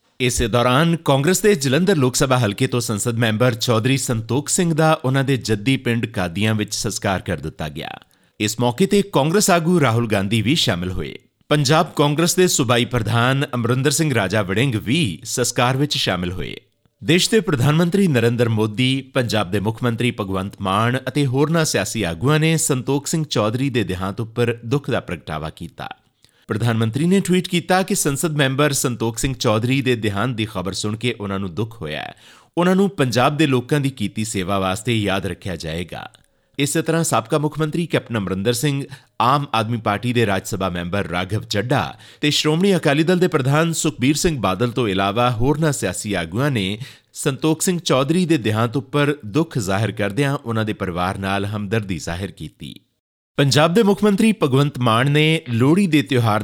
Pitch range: 105-150 Hz